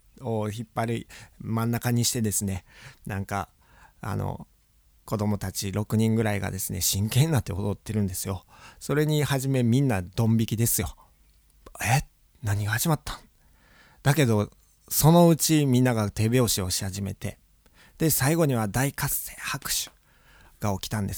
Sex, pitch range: male, 100-135 Hz